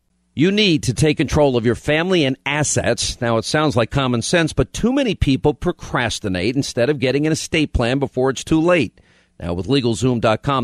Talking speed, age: 190 wpm, 50-69